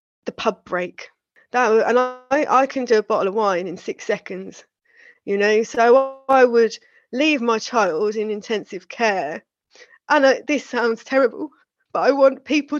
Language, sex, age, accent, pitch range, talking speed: English, female, 20-39, British, 225-275 Hz, 170 wpm